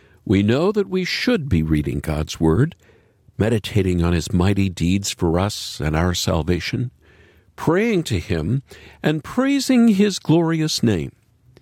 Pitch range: 90-140 Hz